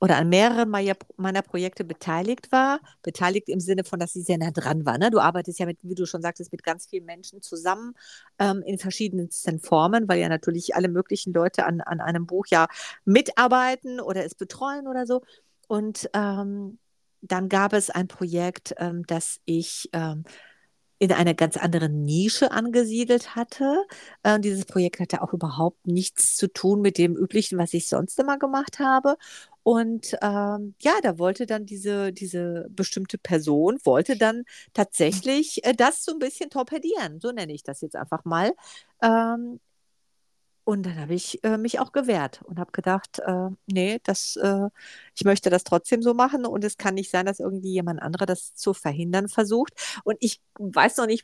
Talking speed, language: 180 wpm, German